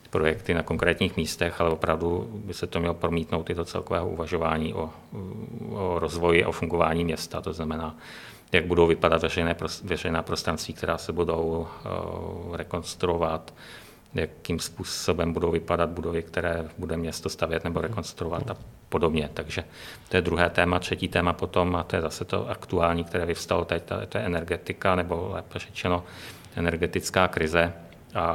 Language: Czech